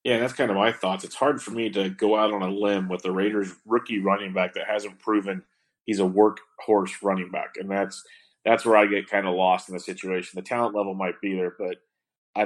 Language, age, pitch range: English, 30-49, 100-115 Hz